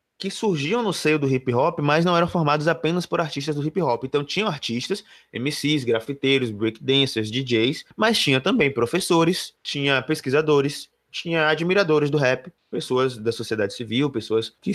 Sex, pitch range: male, 125-160 Hz